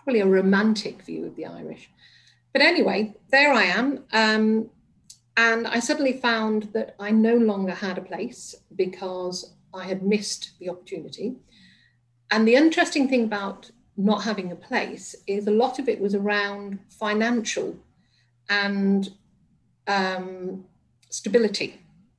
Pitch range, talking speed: 185-230 Hz, 135 wpm